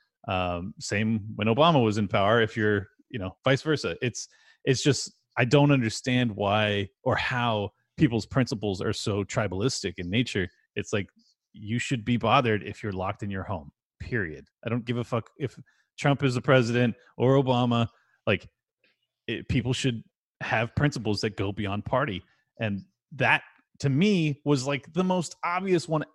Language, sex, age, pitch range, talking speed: English, male, 30-49, 105-140 Hz, 170 wpm